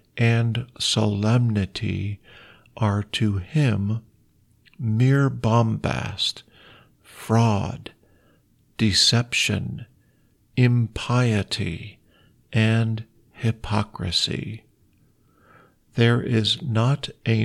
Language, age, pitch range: Thai, 50-69, 105-130 Hz